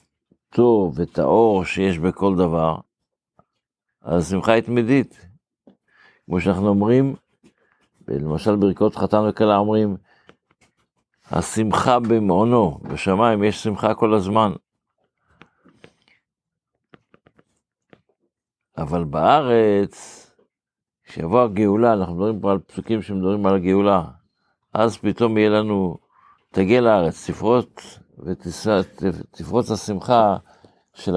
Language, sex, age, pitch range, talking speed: Hebrew, male, 60-79, 95-110 Hz, 85 wpm